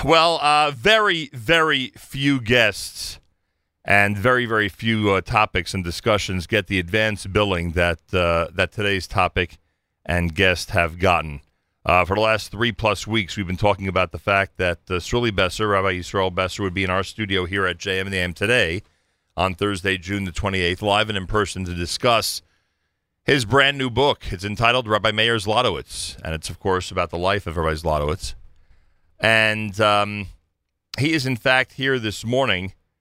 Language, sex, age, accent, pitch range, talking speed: English, male, 40-59, American, 85-110 Hz, 175 wpm